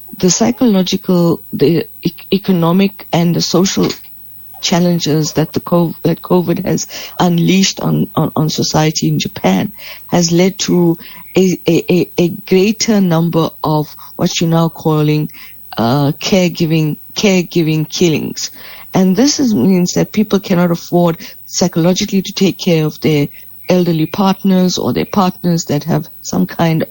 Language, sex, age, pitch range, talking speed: English, female, 50-69, 160-185 Hz, 135 wpm